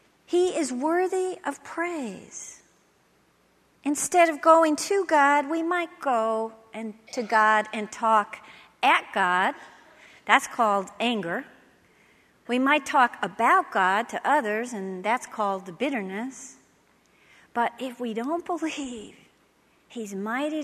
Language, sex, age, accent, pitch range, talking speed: English, female, 50-69, American, 215-285 Hz, 120 wpm